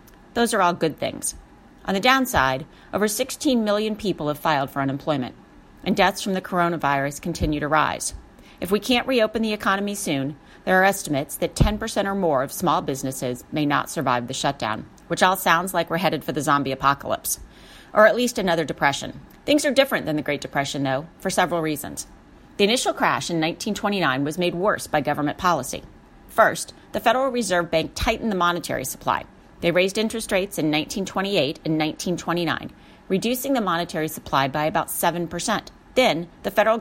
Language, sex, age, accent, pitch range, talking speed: English, female, 40-59, American, 150-215 Hz, 180 wpm